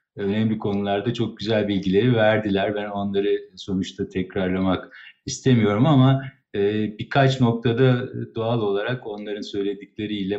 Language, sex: Turkish, male